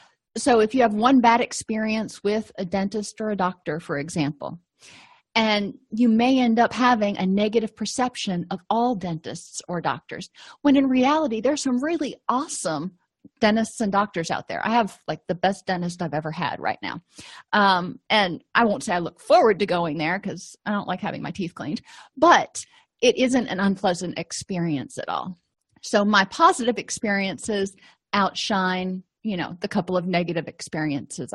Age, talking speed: 30-49, 175 wpm